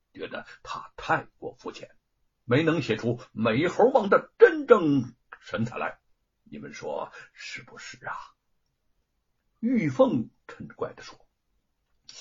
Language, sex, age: Chinese, male, 60-79